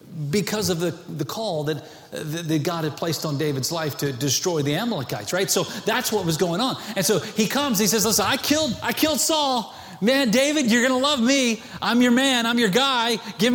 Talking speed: 225 wpm